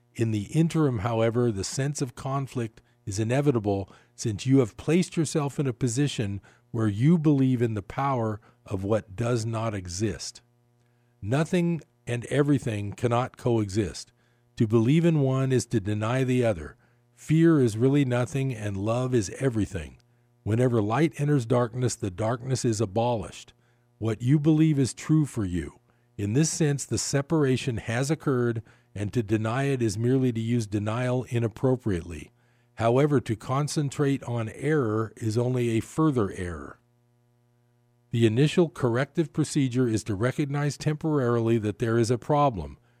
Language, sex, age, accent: English, male, 50-69, American